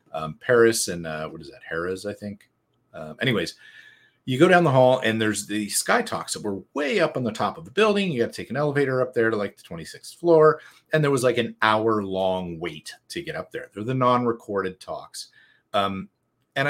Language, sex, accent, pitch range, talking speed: English, male, American, 105-150 Hz, 225 wpm